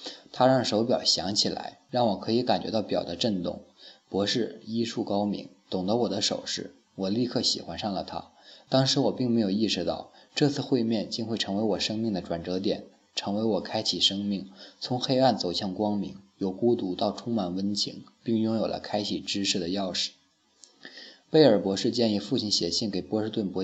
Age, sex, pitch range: 20-39, male, 95-115 Hz